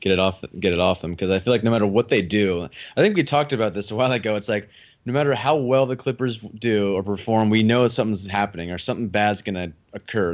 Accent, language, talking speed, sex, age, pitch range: American, English, 260 wpm, male, 20-39, 95-120 Hz